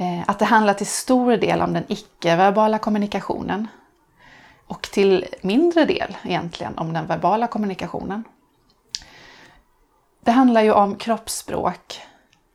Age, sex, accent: 30-49, female, native